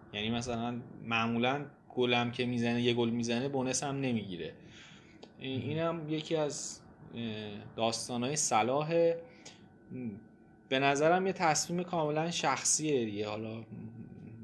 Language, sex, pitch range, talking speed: Persian, male, 115-145 Hz, 110 wpm